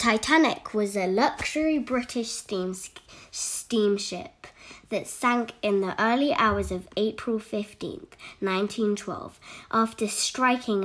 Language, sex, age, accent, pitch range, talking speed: English, female, 10-29, British, 200-275 Hz, 105 wpm